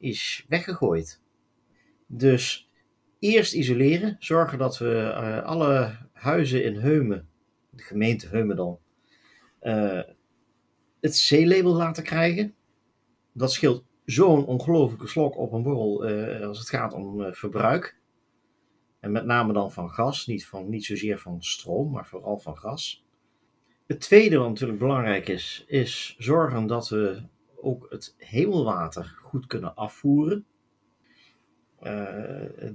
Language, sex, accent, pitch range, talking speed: Dutch, male, Dutch, 105-140 Hz, 125 wpm